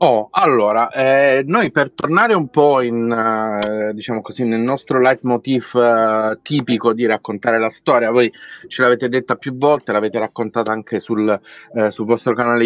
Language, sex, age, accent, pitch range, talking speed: Italian, male, 30-49, native, 110-130 Hz, 165 wpm